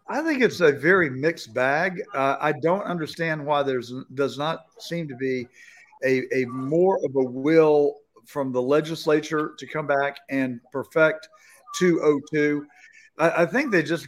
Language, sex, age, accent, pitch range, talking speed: English, male, 50-69, American, 135-190 Hz, 160 wpm